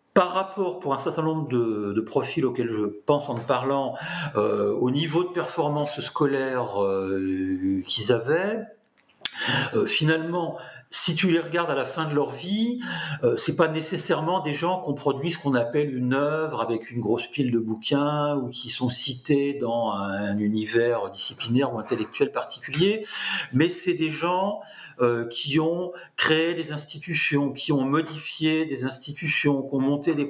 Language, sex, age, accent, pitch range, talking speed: French, male, 50-69, French, 120-160 Hz, 170 wpm